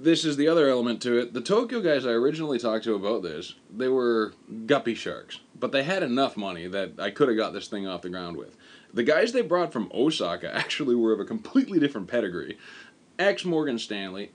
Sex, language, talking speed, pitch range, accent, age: male, English, 215 wpm, 100-135 Hz, American, 20-39